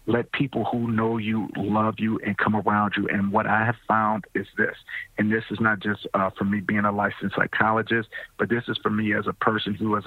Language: English